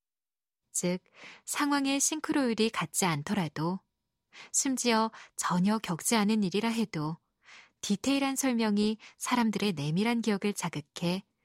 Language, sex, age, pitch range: Korean, female, 20-39, 175-230 Hz